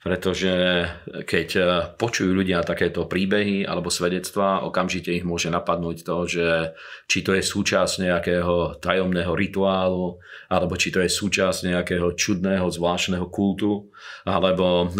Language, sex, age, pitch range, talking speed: Slovak, male, 40-59, 90-100 Hz, 125 wpm